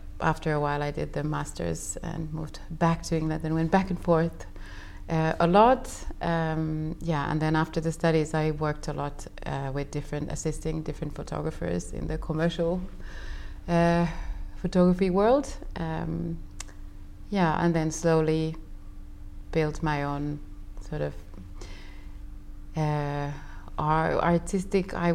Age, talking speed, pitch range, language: 30-49, 135 wpm, 135-165 Hz, English